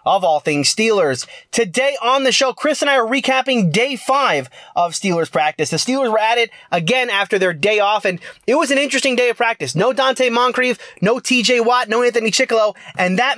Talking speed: 210 wpm